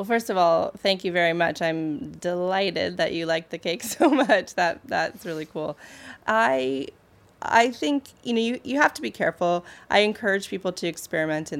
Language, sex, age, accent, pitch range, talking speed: English, female, 30-49, American, 160-185 Hz, 195 wpm